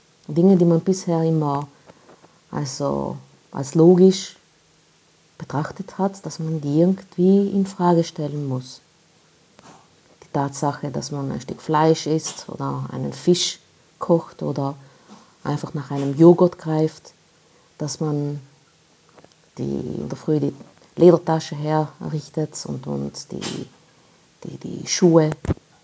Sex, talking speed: female, 115 wpm